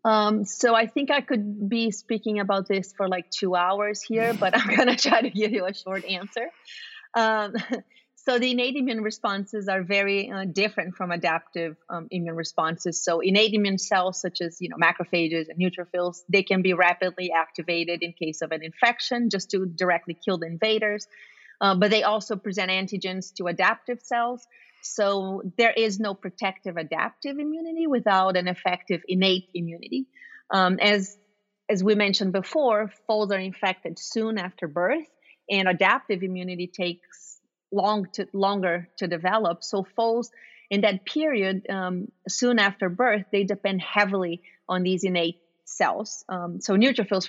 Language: English